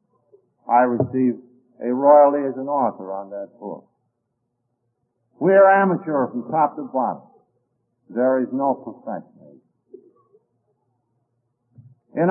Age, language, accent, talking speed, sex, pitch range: 60-79, English, American, 105 wpm, male, 120-160 Hz